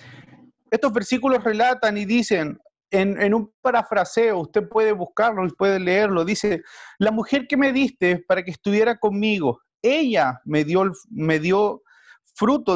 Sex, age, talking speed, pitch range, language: male, 40-59, 145 wpm, 190-245 Hz, Spanish